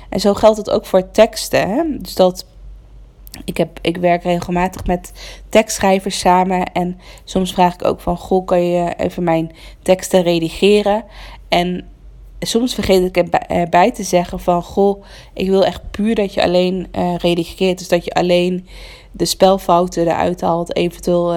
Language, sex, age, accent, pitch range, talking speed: Dutch, female, 20-39, Dutch, 175-195 Hz, 160 wpm